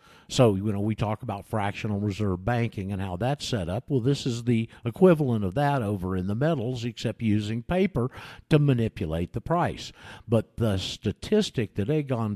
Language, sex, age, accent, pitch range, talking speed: English, male, 50-69, American, 105-135 Hz, 180 wpm